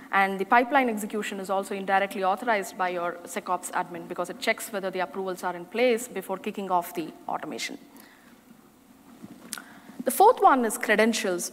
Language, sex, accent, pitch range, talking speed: English, female, Indian, 190-255 Hz, 160 wpm